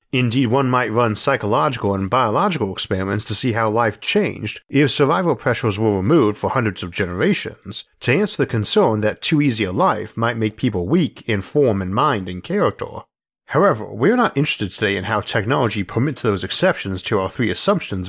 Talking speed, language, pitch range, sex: 185 wpm, English, 105-140 Hz, male